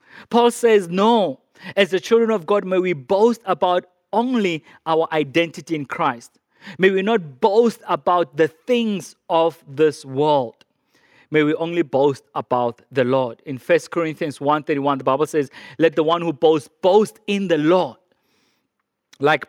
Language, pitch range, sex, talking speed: English, 160-210 Hz, male, 165 wpm